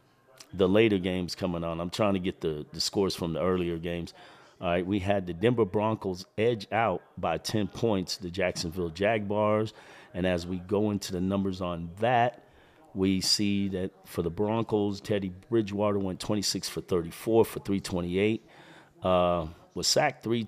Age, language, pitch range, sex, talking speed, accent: 40-59, English, 90-110 Hz, male, 170 wpm, American